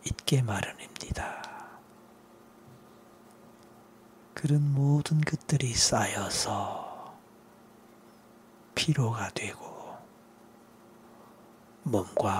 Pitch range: 110-120 Hz